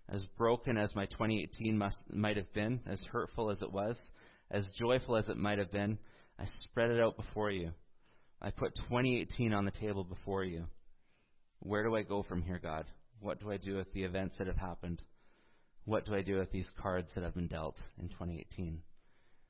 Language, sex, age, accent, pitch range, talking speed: English, male, 30-49, American, 85-110 Hz, 195 wpm